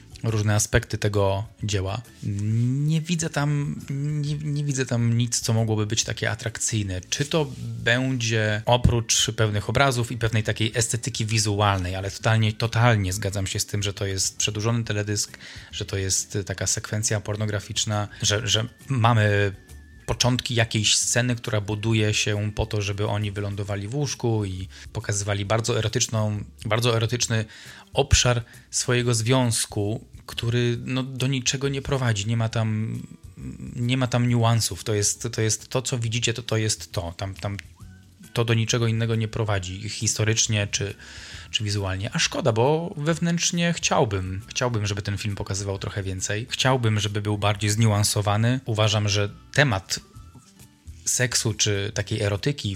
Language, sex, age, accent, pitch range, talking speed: Polish, male, 20-39, native, 105-120 Hz, 140 wpm